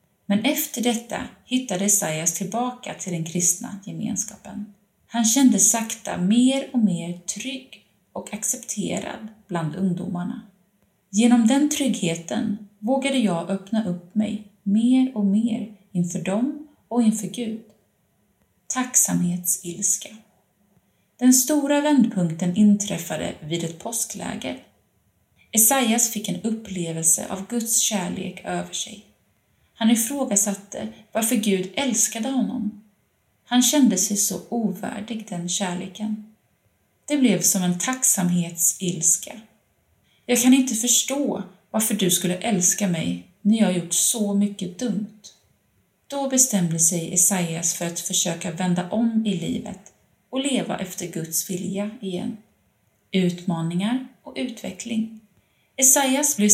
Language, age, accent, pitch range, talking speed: Swedish, 30-49, native, 180-235 Hz, 115 wpm